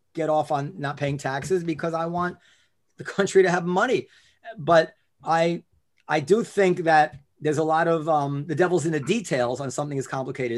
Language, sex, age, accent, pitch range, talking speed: English, male, 40-59, American, 140-195 Hz, 195 wpm